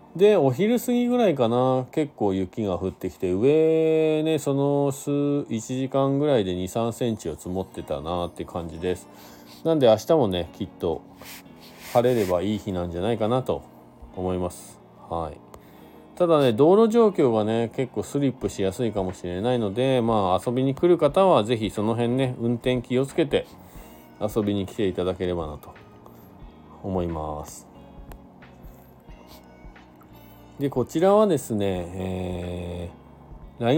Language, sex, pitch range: Japanese, male, 90-130 Hz